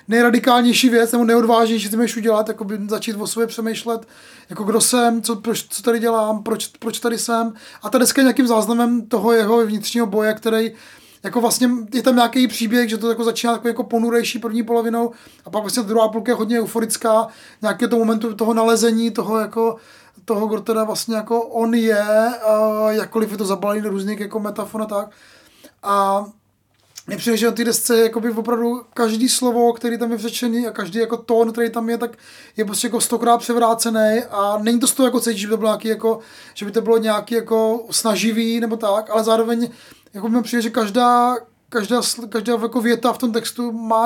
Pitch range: 220-235 Hz